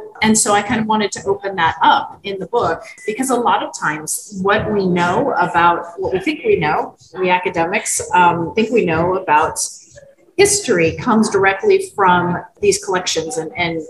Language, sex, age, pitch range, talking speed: English, female, 30-49, 185-265 Hz, 180 wpm